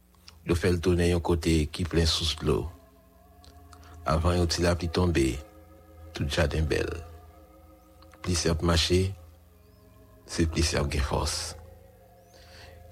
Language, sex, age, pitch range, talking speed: English, male, 60-79, 80-95 Hz, 140 wpm